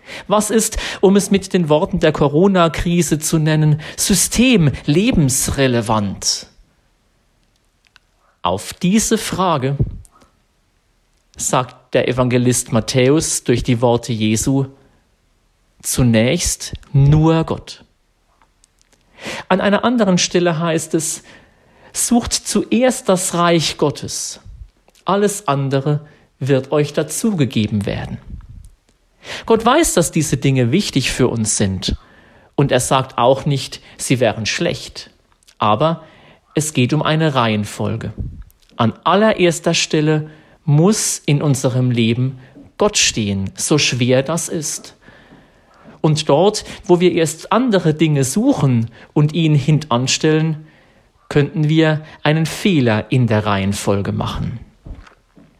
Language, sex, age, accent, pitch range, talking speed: German, male, 50-69, German, 125-170 Hz, 105 wpm